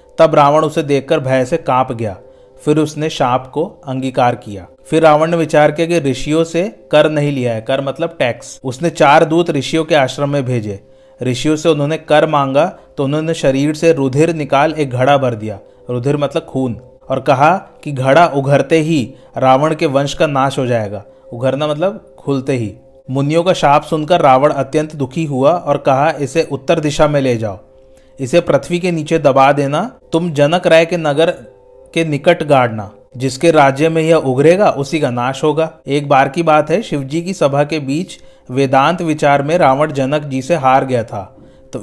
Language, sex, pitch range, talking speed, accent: Hindi, male, 130-160 Hz, 190 wpm, native